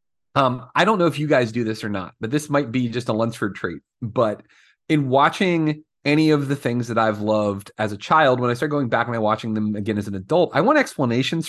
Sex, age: male, 30-49